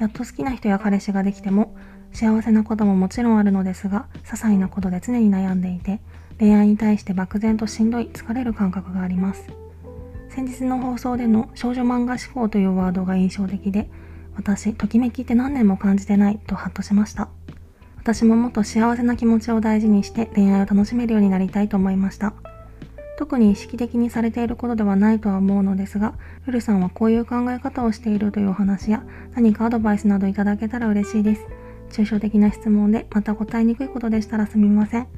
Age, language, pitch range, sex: 20-39, Japanese, 190-230 Hz, female